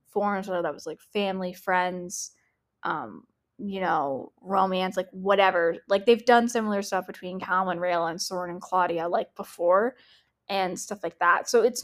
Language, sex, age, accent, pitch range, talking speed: English, female, 10-29, American, 185-220 Hz, 165 wpm